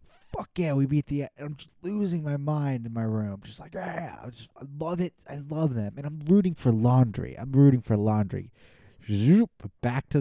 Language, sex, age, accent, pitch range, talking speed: English, male, 20-39, American, 105-140 Hz, 200 wpm